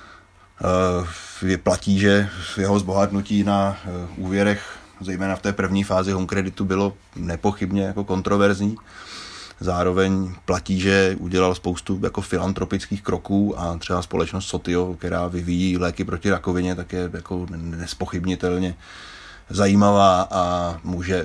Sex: male